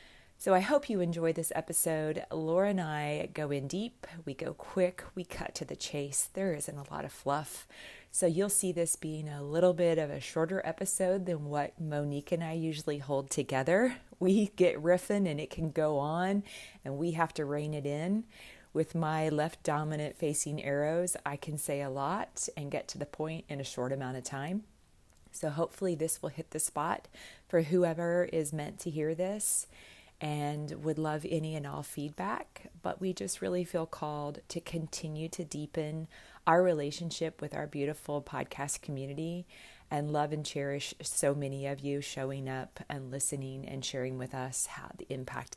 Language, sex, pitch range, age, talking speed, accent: English, female, 145-170 Hz, 30-49, 185 wpm, American